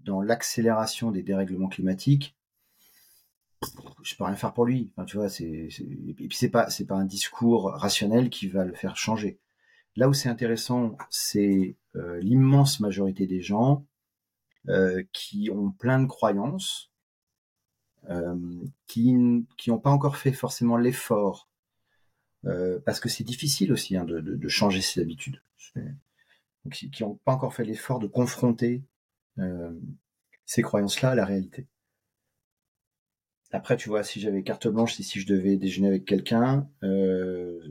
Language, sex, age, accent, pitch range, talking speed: French, male, 40-59, French, 95-125 Hz, 160 wpm